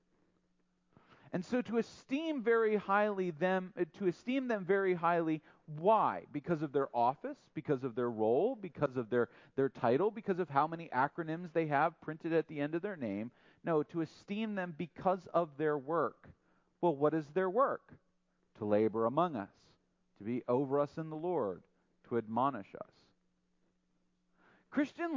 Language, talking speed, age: English, 160 wpm, 40-59